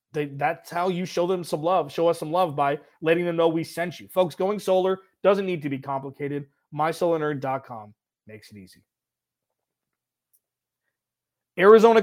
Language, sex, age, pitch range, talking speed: English, male, 30-49, 150-185 Hz, 160 wpm